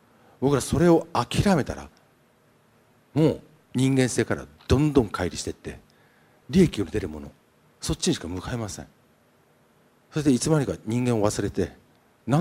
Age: 50-69